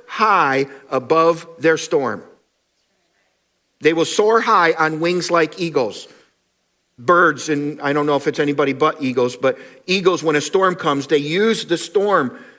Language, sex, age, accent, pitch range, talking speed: English, male, 50-69, American, 150-210 Hz, 155 wpm